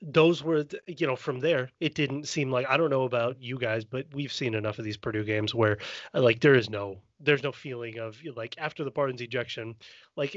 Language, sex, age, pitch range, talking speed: English, male, 30-49, 120-155 Hz, 225 wpm